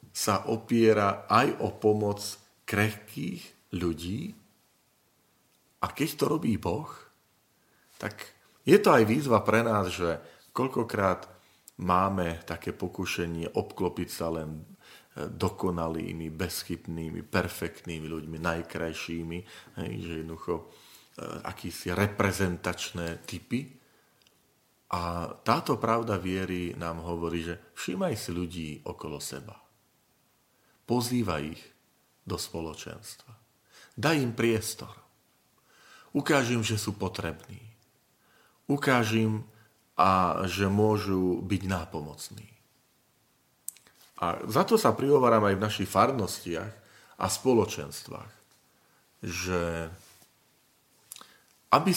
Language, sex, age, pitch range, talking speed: Slovak, male, 40-59, 85-110 Hz, 90 wpm